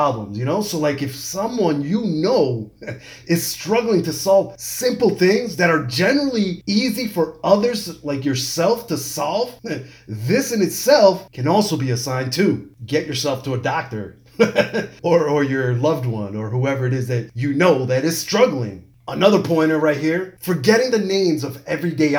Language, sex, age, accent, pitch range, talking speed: English, male, 30-49, American, 140-200 Hz, 170 wpm